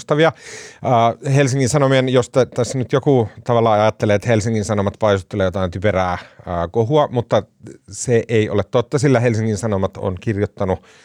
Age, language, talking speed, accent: 30-49, Finnish, 145 wpm, native